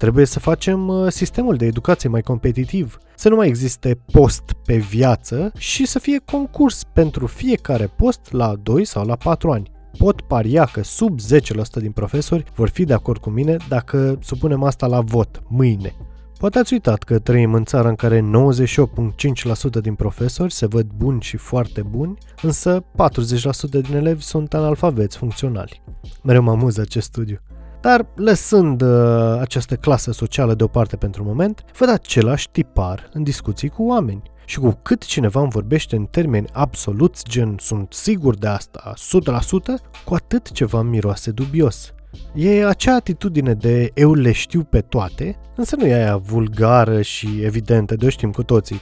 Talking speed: 165 wpm